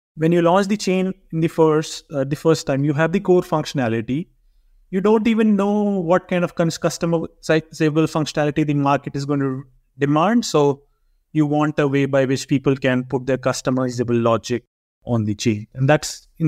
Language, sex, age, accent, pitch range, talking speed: English, male, 30-49, Indian, 140-190 Hz, 180 wpm